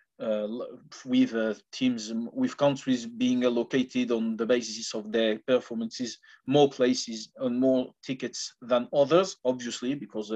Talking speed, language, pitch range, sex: 135 wpm, English, 120-145 Hz, male